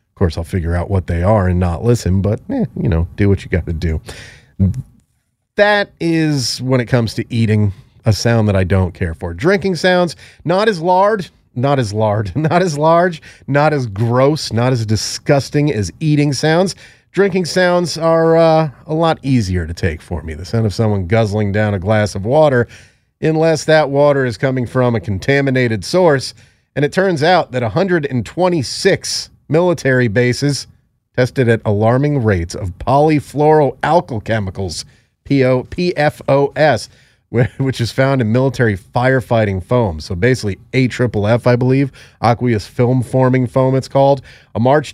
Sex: male